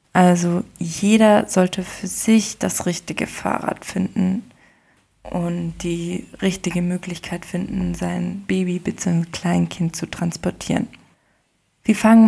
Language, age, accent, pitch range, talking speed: German, 20-39, German, 175-210 Hz, 110 wpm